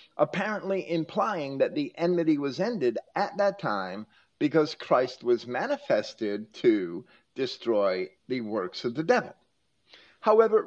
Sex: male